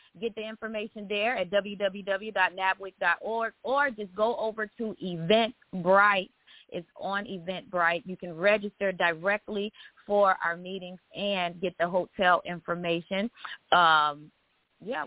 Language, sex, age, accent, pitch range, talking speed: English, female, 30-49, American, 180-230 Hz, 115 wpm